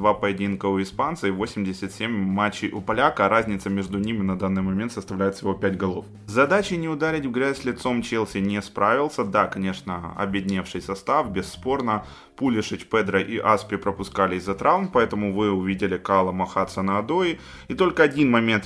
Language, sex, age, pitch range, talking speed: Ukrainian, male, 20-39, 95-120 Hz, 165 wpm